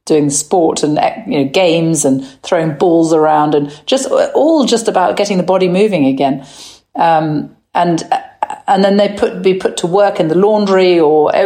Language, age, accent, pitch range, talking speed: English, 50-69, British, 165-210 Hz, 185 wpm